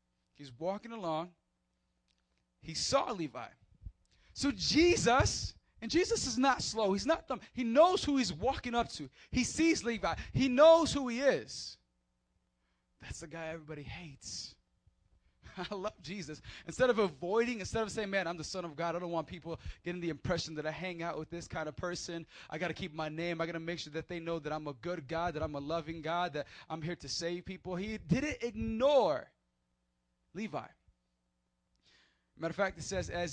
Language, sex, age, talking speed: English, male, 20-39, 195 wpm